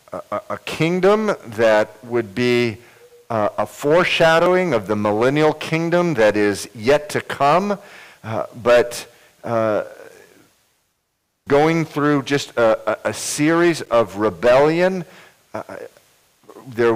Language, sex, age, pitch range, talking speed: English, male, 50-69, 110-145 Hz, 90 wpm